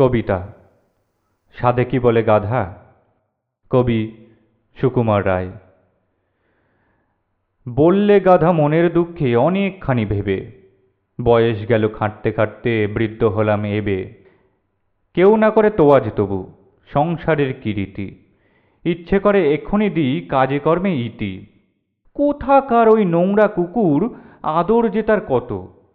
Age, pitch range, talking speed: 40-59, 110-170 Hz, 100 wpm